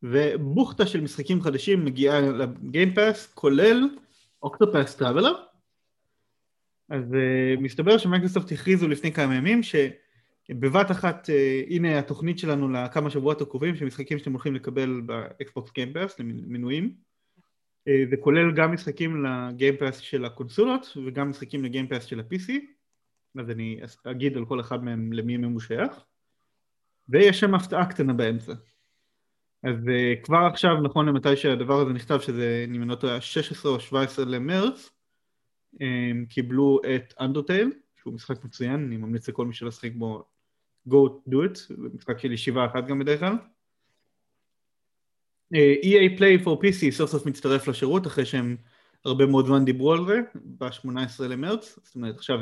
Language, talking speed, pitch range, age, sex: Hebrew, 140 wpm, 125-170 Hz, 30-49, male